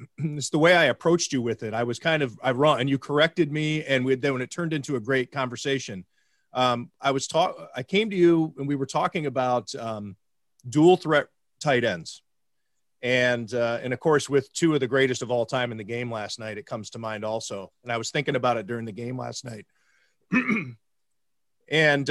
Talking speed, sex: 220 wpm, male